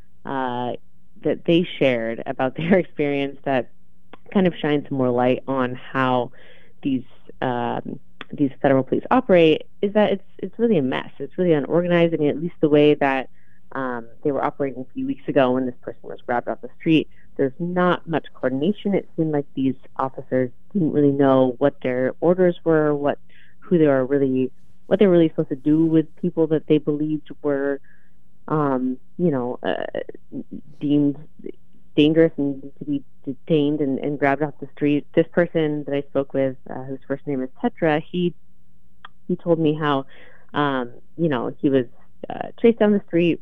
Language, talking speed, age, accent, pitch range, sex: English, 180 wpm, 30-49, American, 135-165 Hz, female